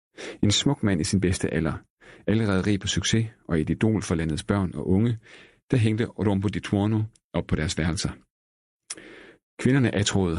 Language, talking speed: Danish, 175 wpm